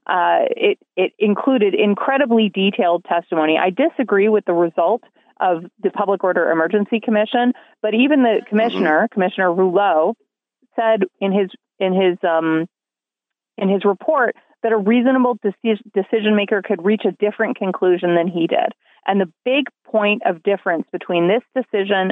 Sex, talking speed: female, 150 wpm